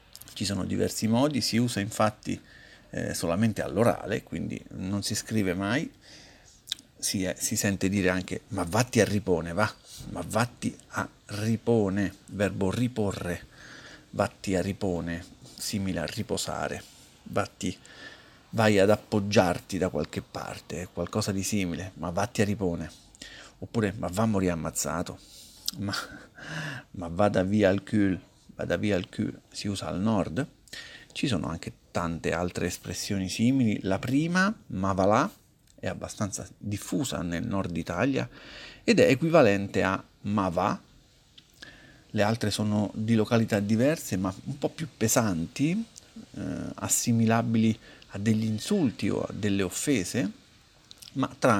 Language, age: Italian, 50-69